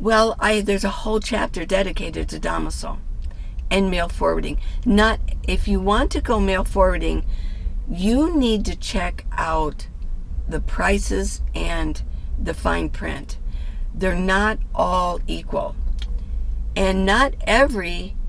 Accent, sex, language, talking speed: American, female, English, 120 wpm